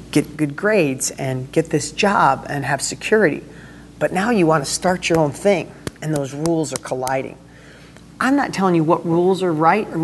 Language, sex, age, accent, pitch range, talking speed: English, male, 40-59, American, 140-170 Hz, 195 wpm